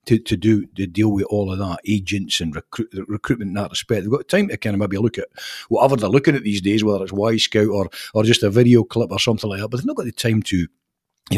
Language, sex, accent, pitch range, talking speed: English, male, British, 95-120 Hz, 295 wpm